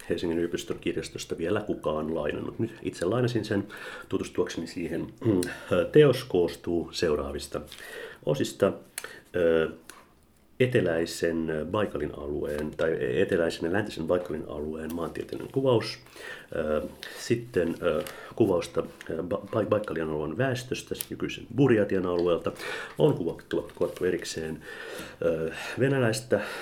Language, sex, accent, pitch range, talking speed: Finnish, male, native, 85-105 Hz, 90 wpm